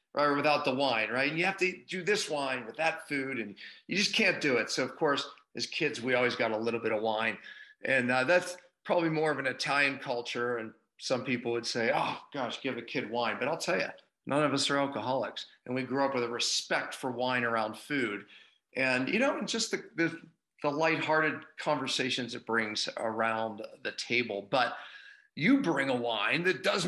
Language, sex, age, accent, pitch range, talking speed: English, male, 40-59, American, 120-170 Hz, 210 wpm